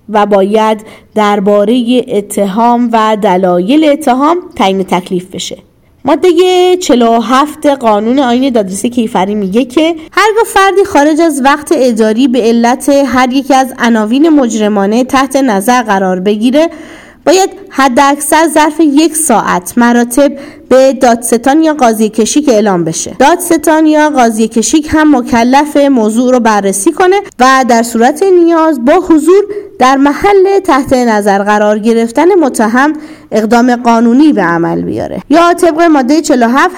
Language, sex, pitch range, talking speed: Persian, female, 225-300 Hz, 130 wpm